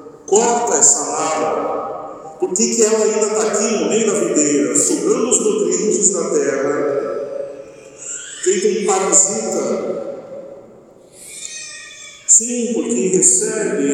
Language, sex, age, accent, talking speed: Portuguese, male, 50-69, Brazilian, 100 wpm